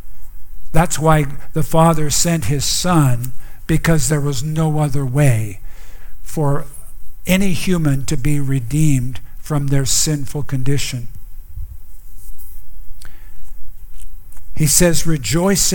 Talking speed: 100 wpm